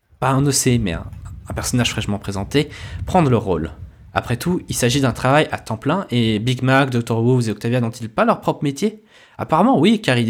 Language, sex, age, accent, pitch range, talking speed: French, male, 20-39, French, 110-145 Hz, 210 wpm